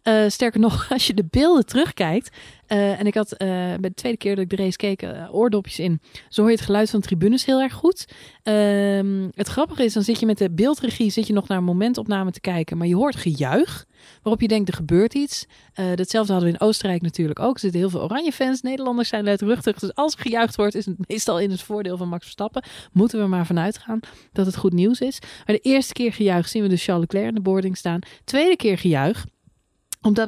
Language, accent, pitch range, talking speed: Dutch, Dutch, 185-240 Hz, 245 wpm